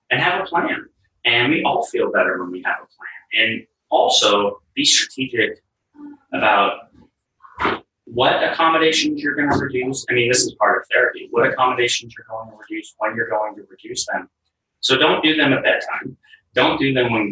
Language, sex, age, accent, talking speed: English, male, 30-49, American, 185 wpm